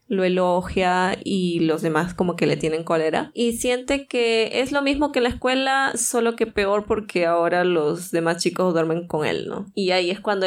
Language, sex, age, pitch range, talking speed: Spanish, female, 20-39, 170-220 Hz, 205 wpm